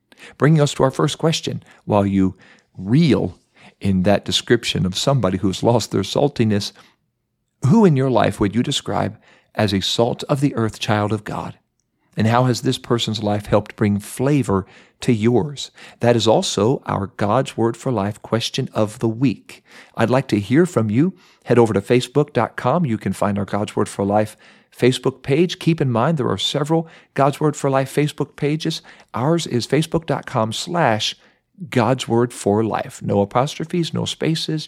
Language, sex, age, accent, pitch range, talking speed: English, male, 50-69, American, 105-140 Hz, 175 wpm